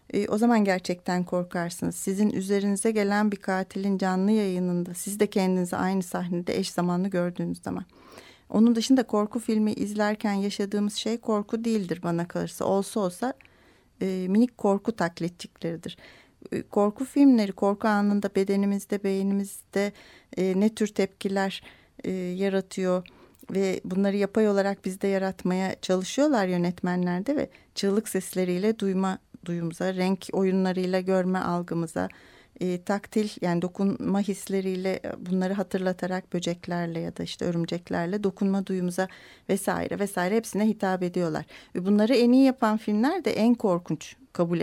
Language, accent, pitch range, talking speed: Turkish, native, 180-210 Hz, 130 wpm